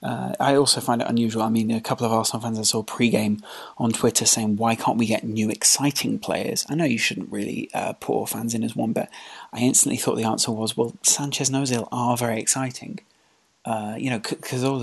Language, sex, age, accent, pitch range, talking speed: English, male, 30-49, British, 110-135 Hz, 225 wpm